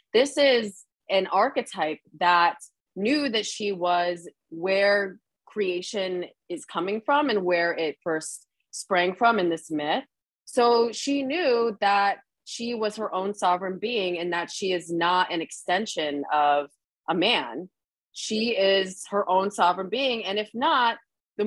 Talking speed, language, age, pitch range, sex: 150 wpm, English, 30-49, 175-230 Hz, female